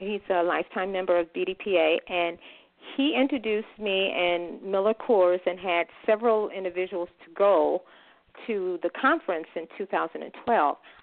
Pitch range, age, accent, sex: 175-220 Hz, 40-59, American, female